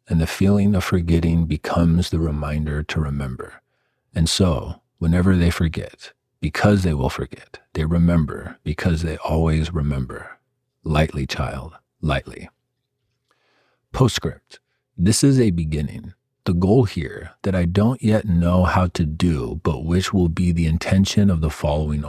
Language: English